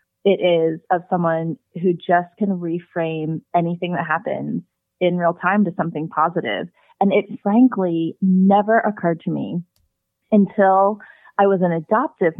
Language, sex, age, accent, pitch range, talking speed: English, female, 30-49, American, 160-190 Hz, 140 wpm